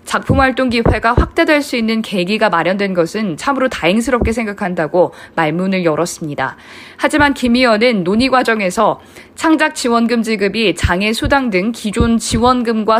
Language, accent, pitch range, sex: Korean, native, 190-265 Hz, female